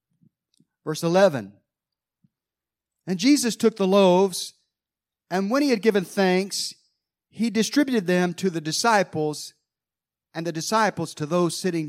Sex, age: male, 50-69